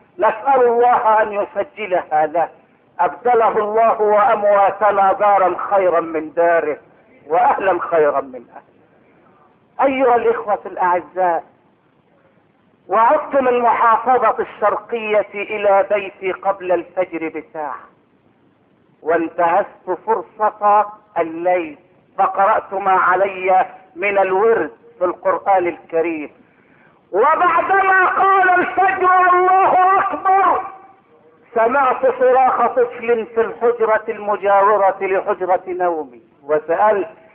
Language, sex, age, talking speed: Arabic, male, 50-69, 85 wpm